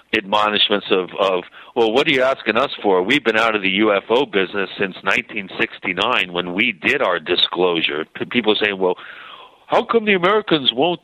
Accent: American